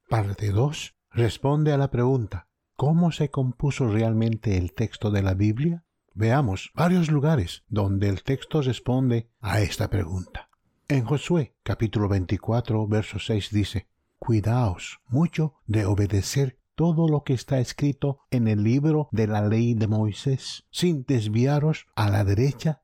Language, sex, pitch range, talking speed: English, male, 105-145 Hz, 140 wpm